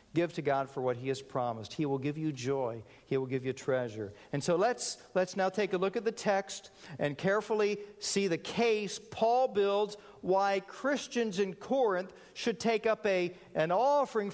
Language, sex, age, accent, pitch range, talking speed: English, male, 50-69, American, 160-210 Hz, 195 wpm